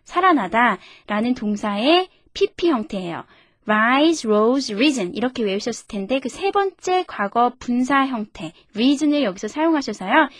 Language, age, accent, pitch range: Korean, 20-39, native, 220-320 Hz